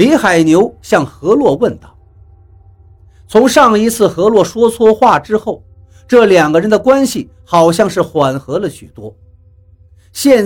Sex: male